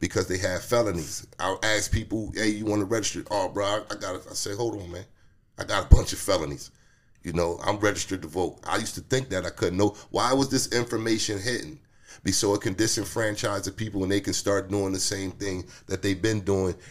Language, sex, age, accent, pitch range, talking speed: English, male, 30-49, American, 95-110 Hz, 230 wpm